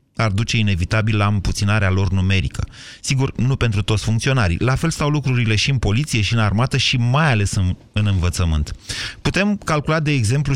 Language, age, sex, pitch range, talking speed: Romanian, 30-49, male, 100-125 Hz, 180 wpm